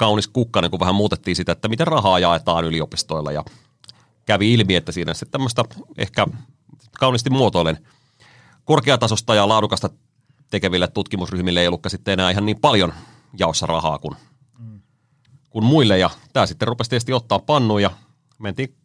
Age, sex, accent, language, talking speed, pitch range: 30-49, male, native, Finnish, 145 wpm, 90-125 Hz